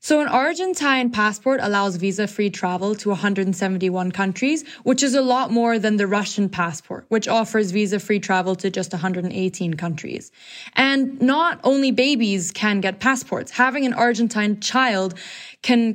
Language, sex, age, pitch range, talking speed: English, female, 20-39, 190-235 Hz, 145 wpm